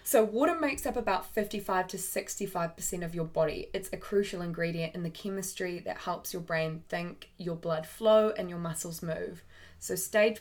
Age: 20-39